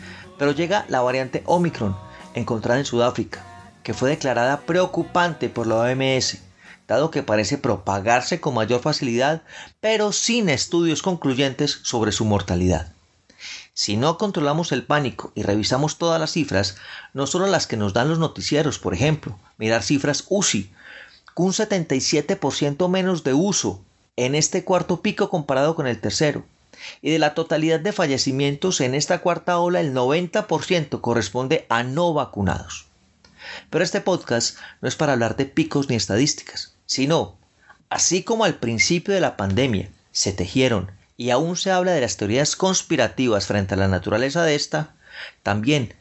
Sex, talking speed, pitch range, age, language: male, 155 wpm, 105-160 Hz, 30-49, Spanish